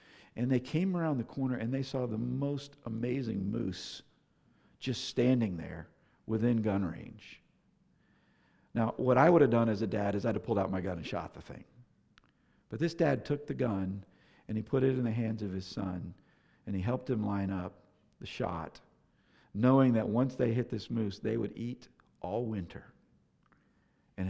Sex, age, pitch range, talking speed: male, 50-69, 95-120 Hz, 190 wpm